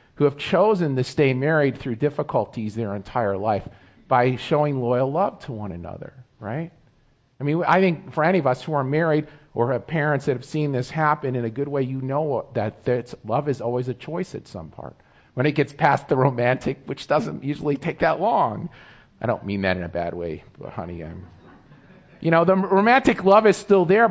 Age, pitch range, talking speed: 40-59, 115-150 Hz, 210 wpm